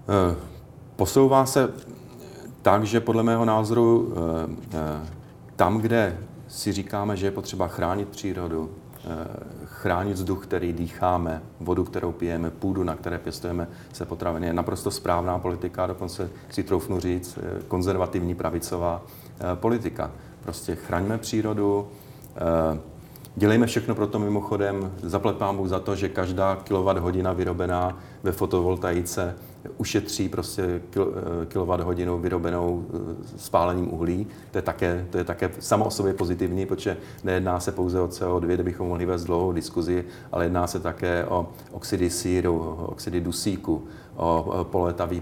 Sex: male